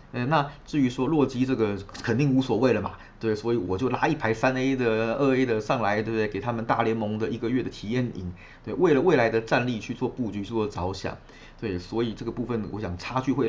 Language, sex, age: Chinese, male, 20-39